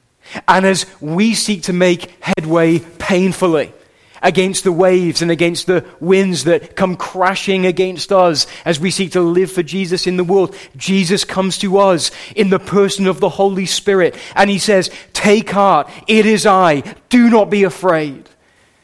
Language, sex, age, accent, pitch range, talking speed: English, male, 30-49, British, 125-185 Hz, 170 wpm